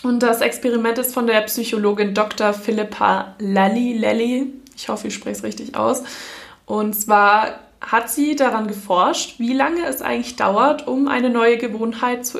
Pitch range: 200-255 Hz